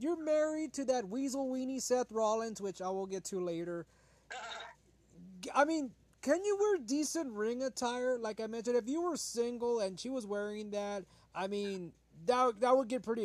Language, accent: English, American